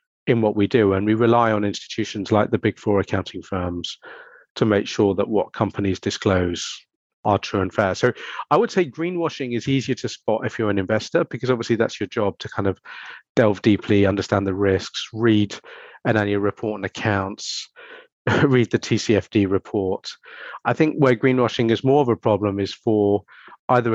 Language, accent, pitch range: English, British, 95-120 Hz